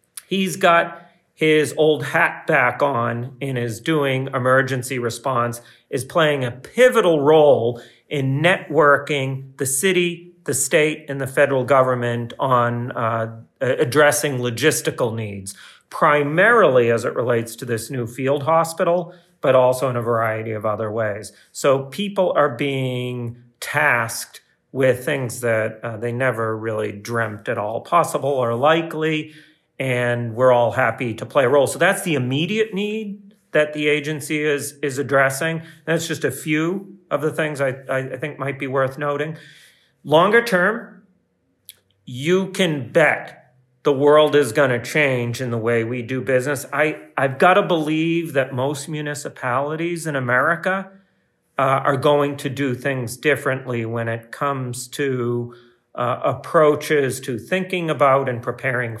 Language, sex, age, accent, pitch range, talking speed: English, male, 40-59, American, 120-155 Hz, 145 wpm